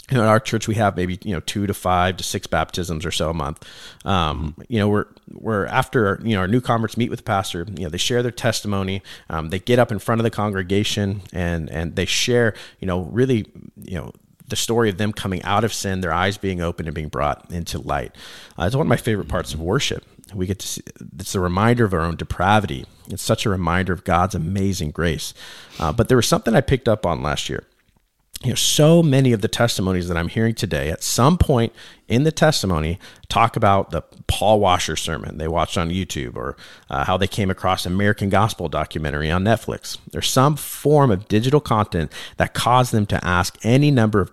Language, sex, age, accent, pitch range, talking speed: English, male, 40-59, American, 90-115 Hz, 225 wpm